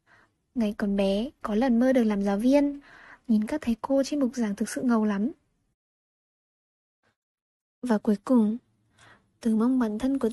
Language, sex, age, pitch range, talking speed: Vietnamese, female, 10-29, 220-280 Hz, 170 wpm